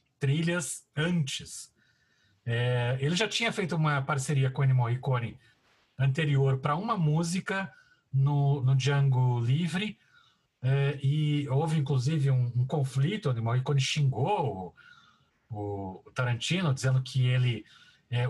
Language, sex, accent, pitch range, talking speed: Portuguese, male, Brazilian, 135-175 Hz, 130 wpm